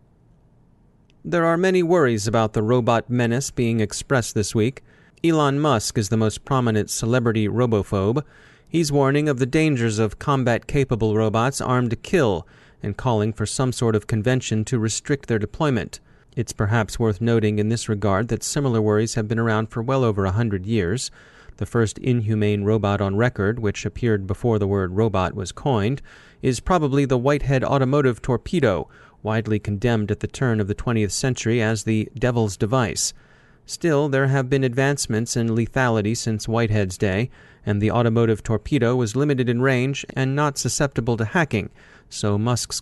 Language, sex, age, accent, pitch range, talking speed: English, male, 30-49, American, 110-135 Hz, 165 wpm